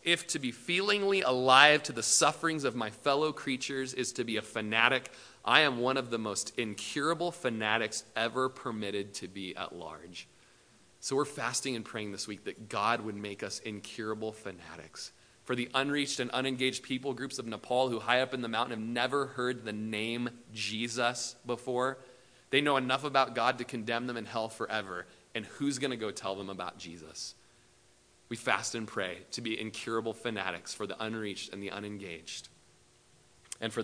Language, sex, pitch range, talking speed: English, male, 110-145 Hz, 185 wpm